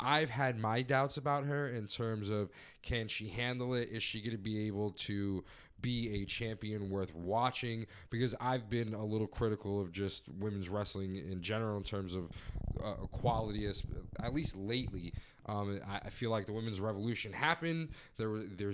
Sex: male